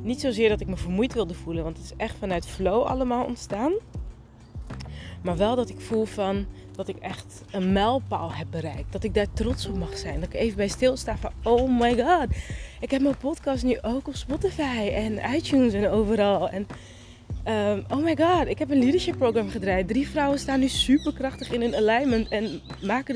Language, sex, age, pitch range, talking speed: Dutch, female, 20-39, 200-280 Hz, 200 wpm